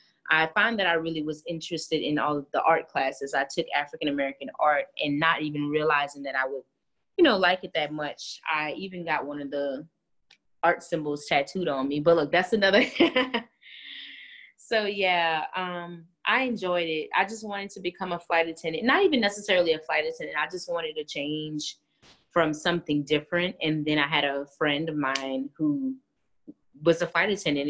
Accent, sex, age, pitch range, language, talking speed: American, female, 20-39, 150-185 Hz, English, 185 wpm